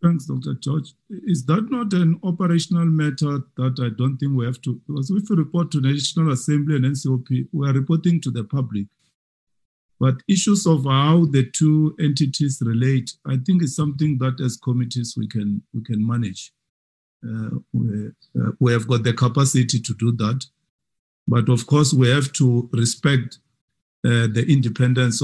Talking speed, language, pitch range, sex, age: 175 wpm, English, 110-145 Hz, male, 50-69